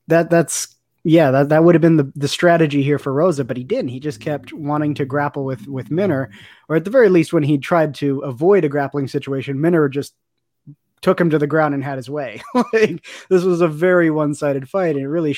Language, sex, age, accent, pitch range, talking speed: English, male, 20-39, American, 135-165 Hz, 240 wpm